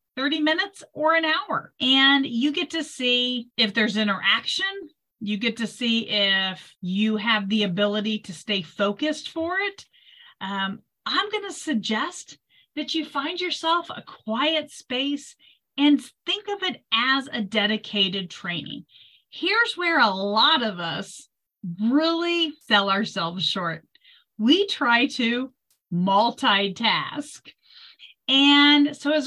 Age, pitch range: 40-59, 210-310 Hz